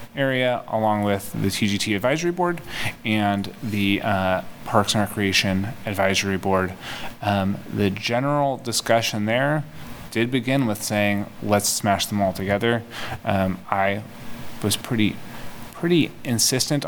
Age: 30-49